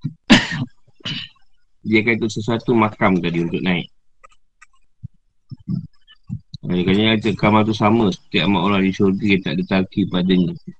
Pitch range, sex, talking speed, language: 95-110 Hz, male, 110 wpm, Malay